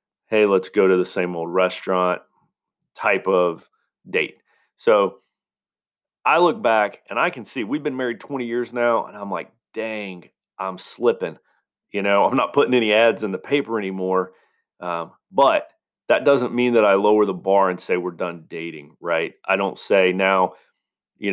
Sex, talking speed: male, 175 wpm